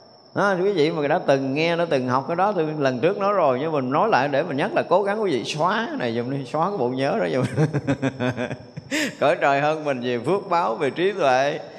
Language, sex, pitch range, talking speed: Vietnamese, male, 135-200 Hz, 250 wpm